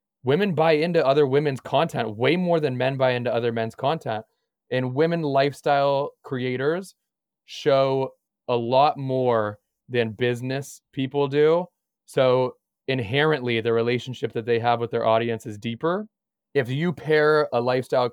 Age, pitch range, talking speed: 20-39, 115-135 Hz, 145 wpm